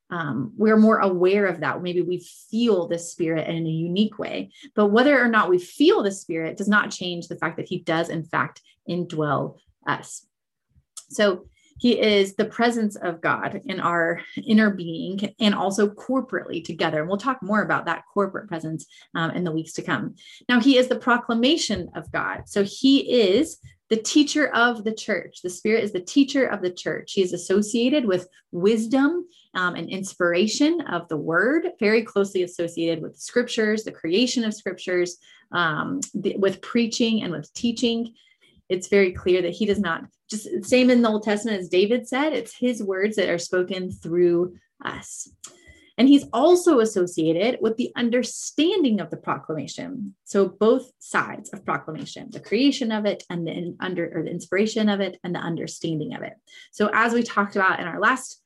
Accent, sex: American, female